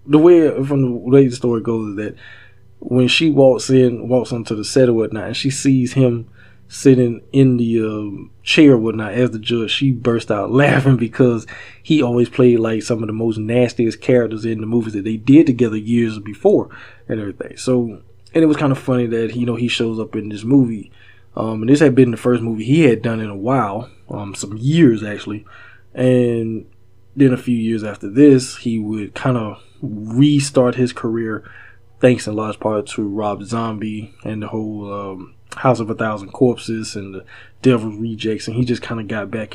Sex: male